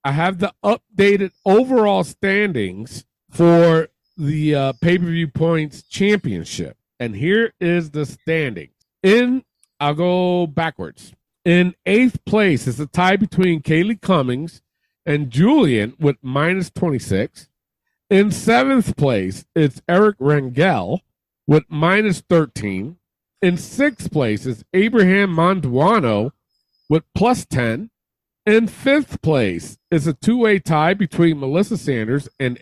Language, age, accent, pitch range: English, 40-59, American, 140-205 Hz